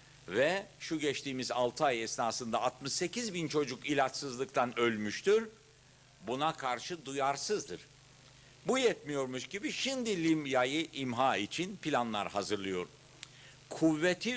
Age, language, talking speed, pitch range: 60-79, Turkish, 100 wpm, 120-160 Hz